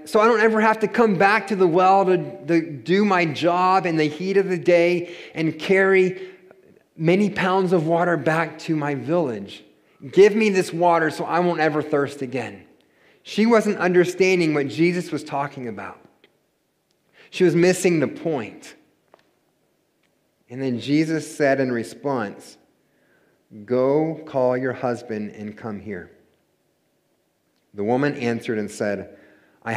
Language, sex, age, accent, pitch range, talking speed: English, male, 30-49, American, 110-170 Hz, 145 wpm